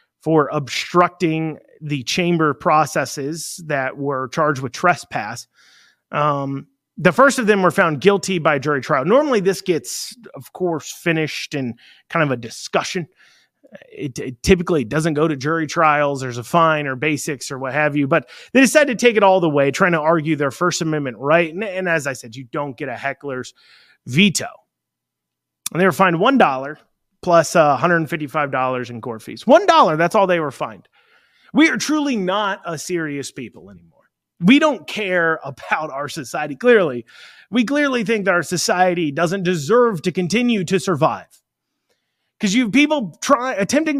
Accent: American